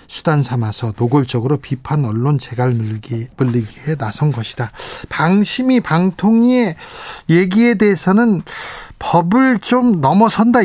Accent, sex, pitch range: native, male, 125-165 Hz